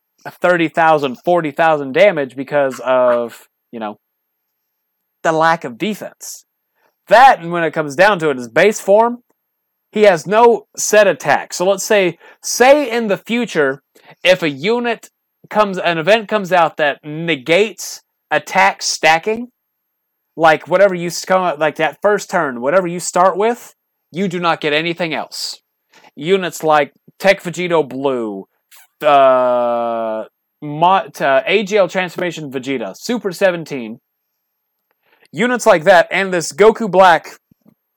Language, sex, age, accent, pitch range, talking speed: English, male, 30-49, American, 135-190 Hz, 135 wpm